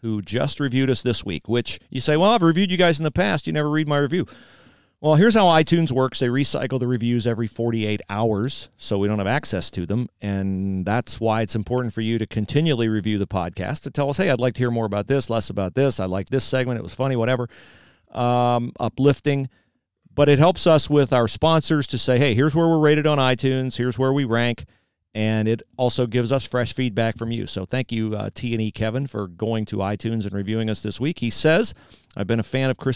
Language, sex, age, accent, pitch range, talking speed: English, male, 40-59, American, 110-140 Hz, 235 wpm